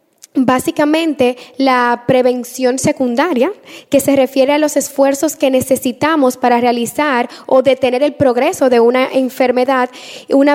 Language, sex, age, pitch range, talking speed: Spanish, female, 10-29, 245-285 Hz, 125 wpm